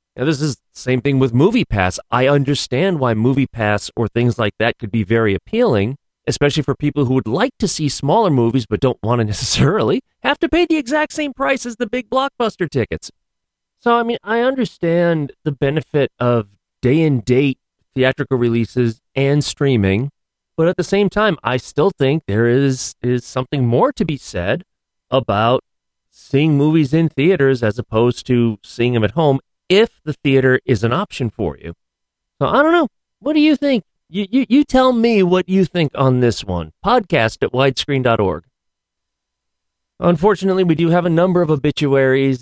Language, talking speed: English, 180 wpm